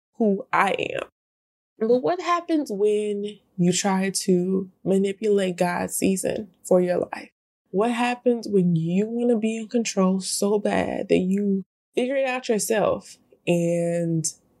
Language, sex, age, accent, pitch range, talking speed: English, female, 20-39, American, 175-220 Hz, 140 wpm